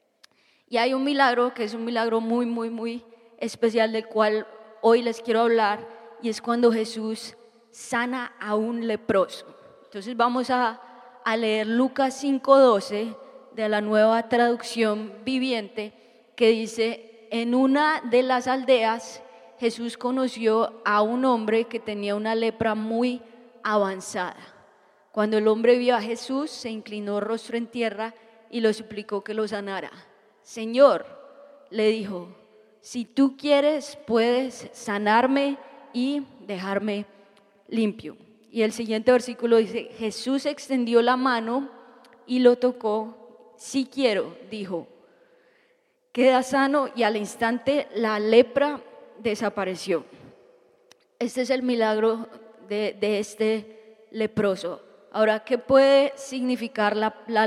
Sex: female